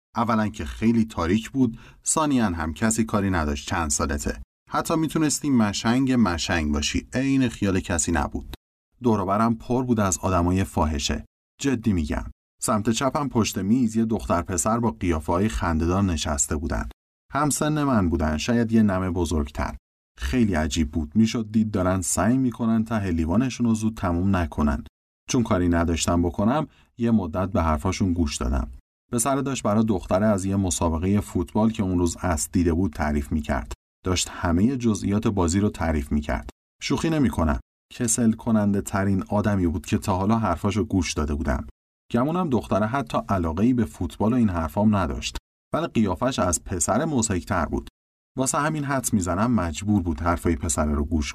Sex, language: male, Persian